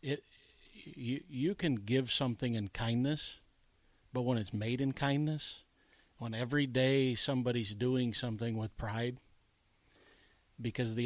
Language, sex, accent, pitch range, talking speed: English, male, American, 110-130 Hz, 130 wpm